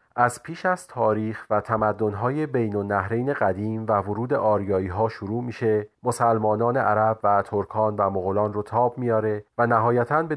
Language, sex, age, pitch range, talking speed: Persian, male, 30-49, 105-125 Hz, 160 wpm